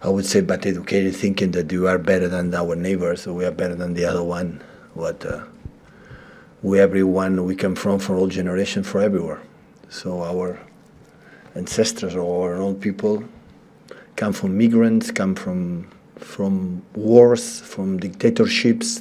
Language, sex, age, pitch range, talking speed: English, male, 40-59, 95-115 Hz, 155 wpm